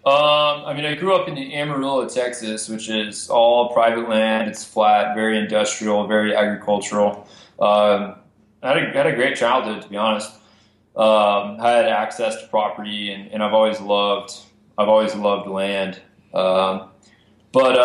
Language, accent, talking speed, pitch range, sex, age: English, American, 165 wpm, 105-115 Hz, male, 20-39